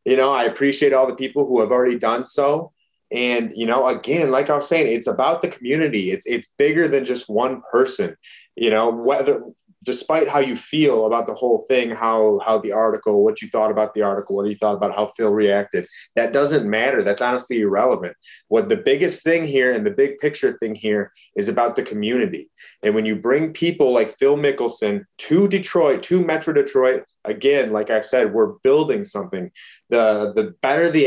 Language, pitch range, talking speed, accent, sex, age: English, 115-165 Hz, 200 wpm, American, male, 30-49